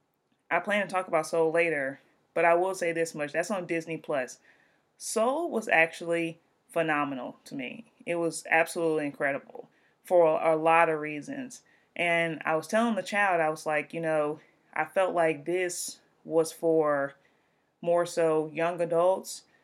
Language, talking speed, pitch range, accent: English, 160 wpm, 155-175 Hz, American